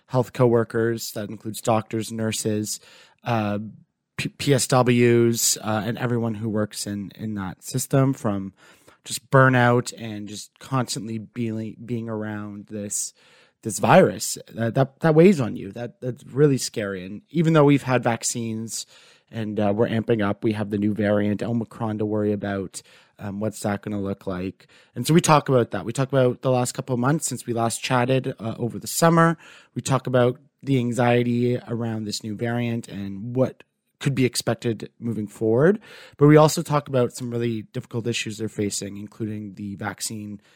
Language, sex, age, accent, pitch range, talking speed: English, male, 30-49, American, 105-125 Hz, 170 wpm